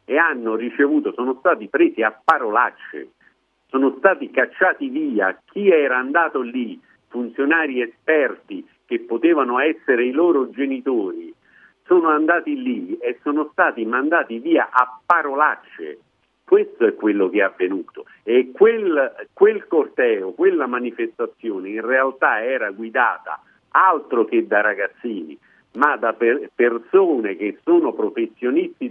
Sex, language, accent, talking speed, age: male, Italian, native, 125 wpm, 50-69